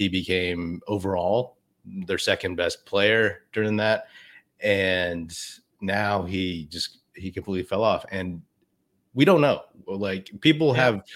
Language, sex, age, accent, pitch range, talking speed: English, male, 30-49, American, 90-110 Hz, 130 wpm